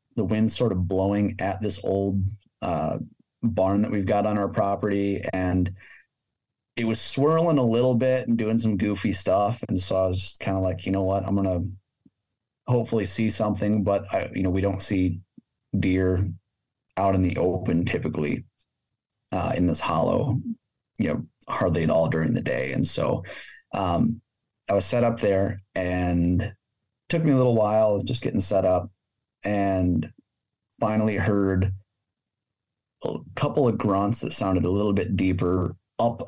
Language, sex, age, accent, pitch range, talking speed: English, male, 30-49, American, 95-115 Hz, 170 wpm